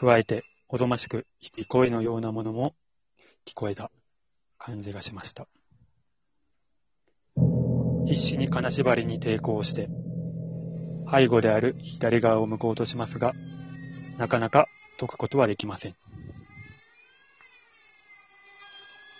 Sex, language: male, Japanese